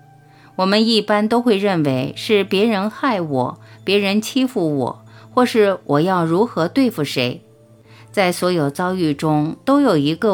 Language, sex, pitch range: Chinese, female, 140-210 Hz